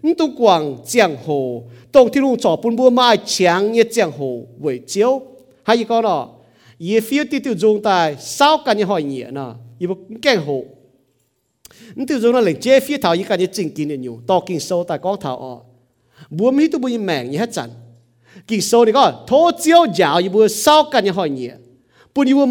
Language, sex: English, male